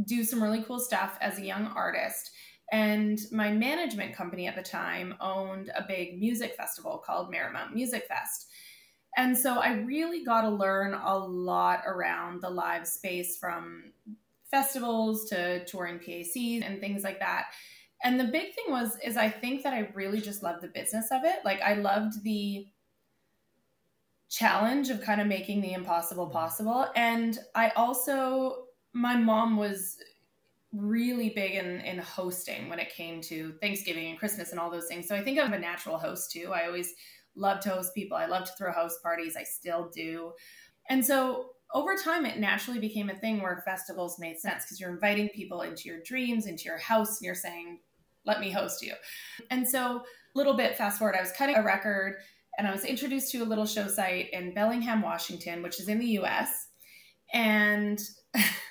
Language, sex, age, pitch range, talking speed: English, female, 20-39, 185-235 Hz, 185 wpm